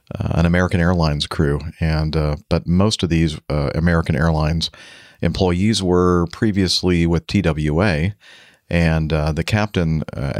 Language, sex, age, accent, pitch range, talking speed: English, male, 50-69, American, 80-90 Hz, 140 wpm